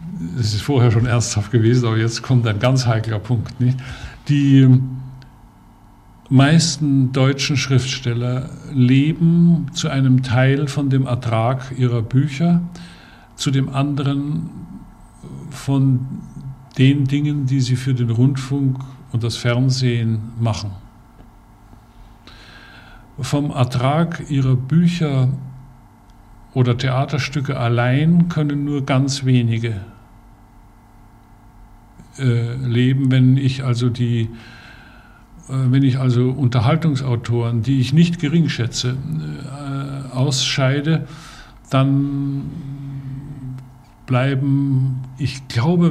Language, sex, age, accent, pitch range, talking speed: German, male, 50-69, German, 120-135 Hz, 100 wpm